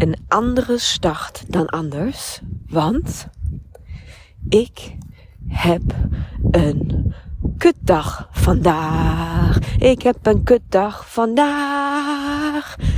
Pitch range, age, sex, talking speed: 175-245 Hz, 30-49, female, 75 wpm